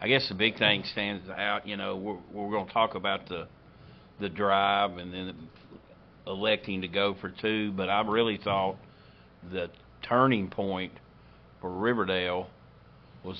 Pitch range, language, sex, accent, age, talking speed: 95-110 Hz, English, male, American, 60-79, 150 wpm